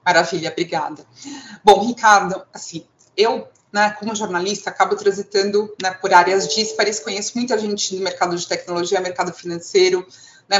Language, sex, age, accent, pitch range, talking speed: Portuguese, female, 30-49, Brazilian, 190-270 Hz, 140 wpm